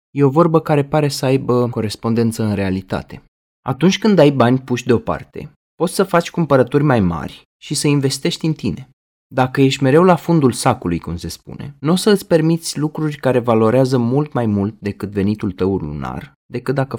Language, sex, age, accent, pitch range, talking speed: Romanian, male, 20-39, native, 110-150 Hz, 185 wpm